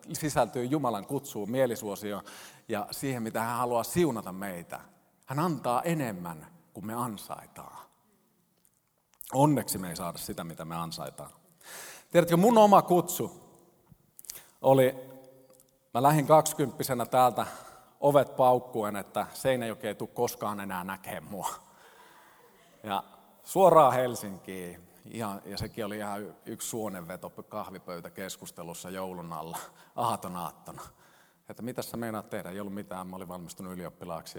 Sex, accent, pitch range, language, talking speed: male, native, 105-165 Hz, Finnish, 125 wpm